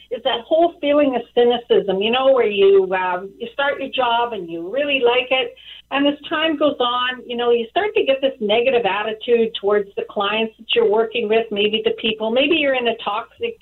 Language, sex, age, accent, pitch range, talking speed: English, female, 50-69, American, 225-295 Hz, 215 wpm